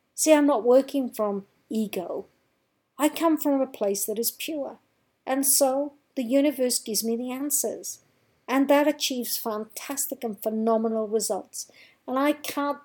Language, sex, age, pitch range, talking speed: English, female, 50-69, 205-275 Hz, 150 wpm